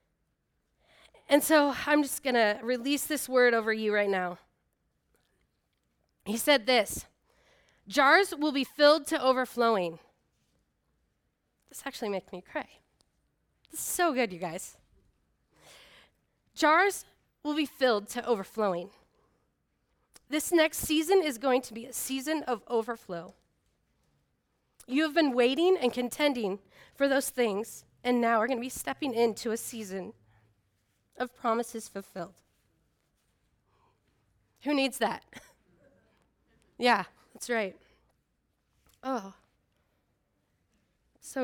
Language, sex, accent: English, female, American